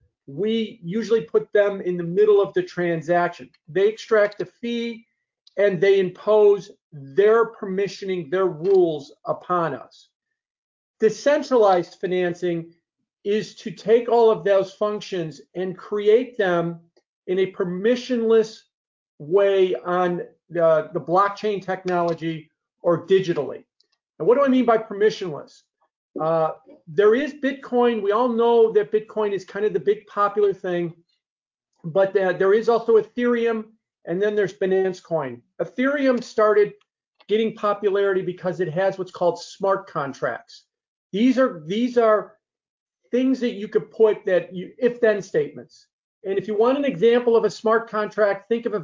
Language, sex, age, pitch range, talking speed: English, male, 50-69, 180-230 Hz, 145 wpm